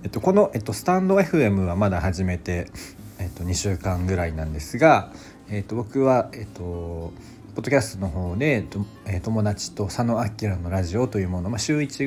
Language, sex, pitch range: Japanese, male, 90-110 Hz